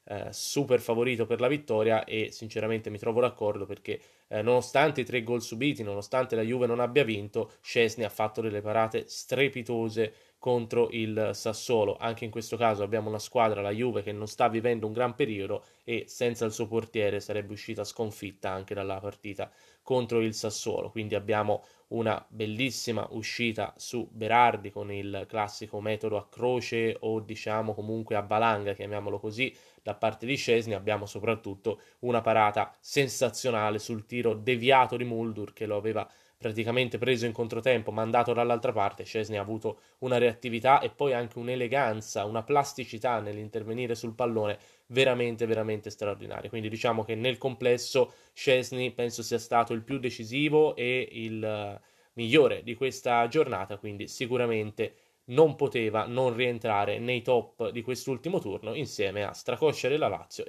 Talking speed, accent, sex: 155 wpm, native, male